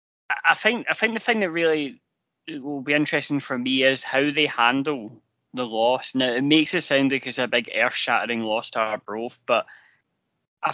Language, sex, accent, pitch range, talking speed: English, male, British, 115-145 Hz, 195 wpm